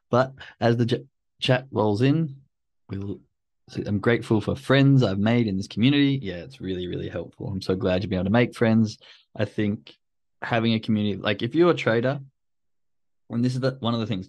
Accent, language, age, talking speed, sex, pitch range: Australian, English, 20-39, 195 wpm, male, 95-115 Hz